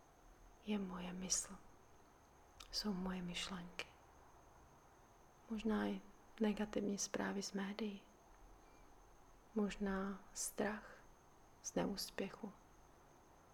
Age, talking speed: 30-49, 70 wpm